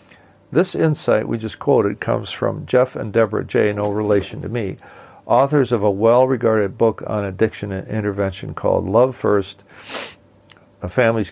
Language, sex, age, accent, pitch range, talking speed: English, male, 50-69, American, 100-120 Hz, 155 wpm